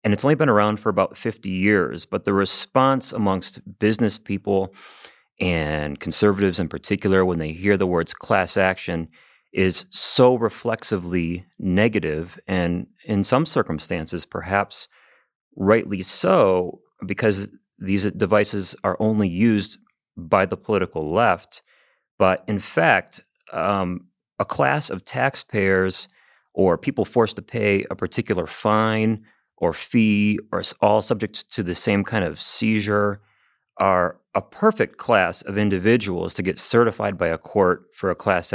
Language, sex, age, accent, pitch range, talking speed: English, male, 30-49, American, 90-110 Hz, 140 wpm